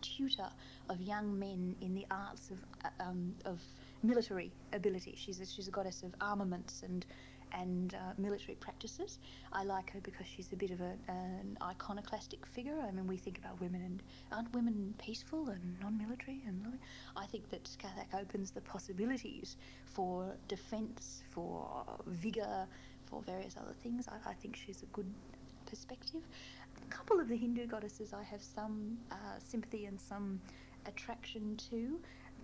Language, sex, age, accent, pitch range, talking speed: English, female, 30-49, Australian, 190-225 Hz, 160 wpm